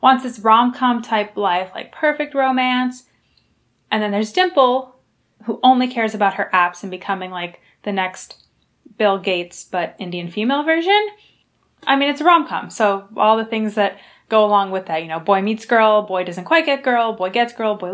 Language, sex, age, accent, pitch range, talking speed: English, female, 20-39, American, 190-255 Hz, 195 wpm